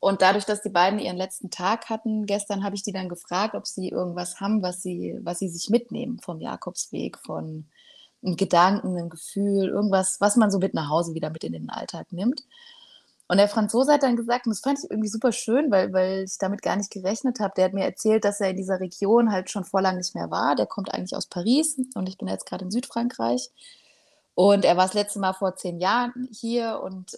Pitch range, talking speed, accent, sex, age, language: 185-225 Hz, 230 wpm, German, female, 20-39, German